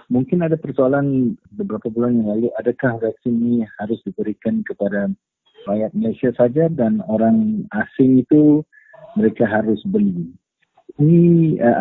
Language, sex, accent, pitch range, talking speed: English, male, Indonesian, 115-150 Hz, 125 wpm